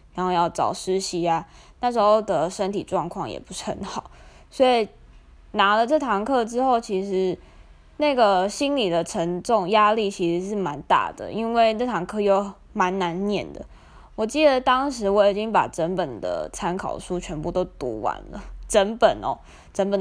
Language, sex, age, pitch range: Chinese, female, 20-39, 180-215 Hz